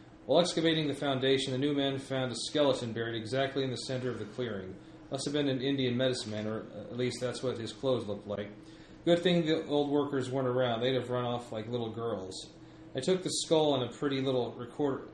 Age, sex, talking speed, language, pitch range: 30-49, male, 225 wpm, English, 115-140 Hz